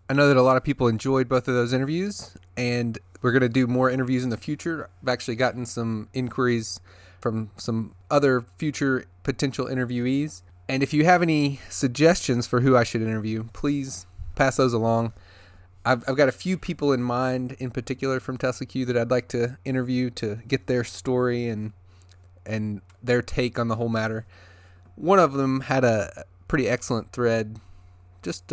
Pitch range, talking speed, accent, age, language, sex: 100-130 Hz, 185 wpm, American, 30-49, English, male